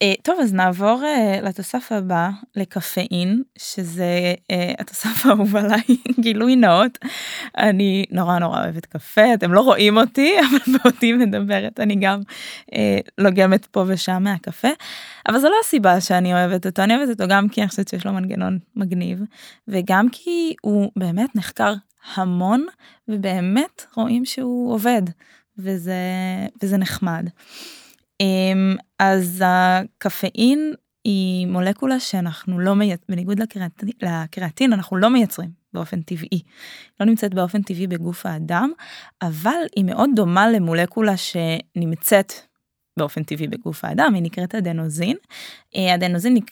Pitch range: 180-230 Hz